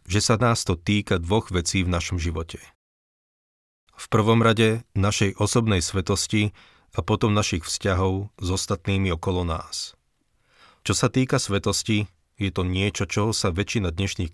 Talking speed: 145 wpm